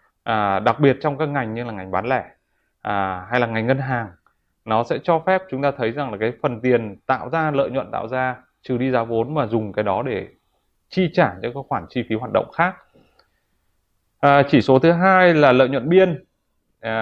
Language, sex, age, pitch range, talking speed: Vietnamese, male, 20-39, 115-145 Hz, 225 wpm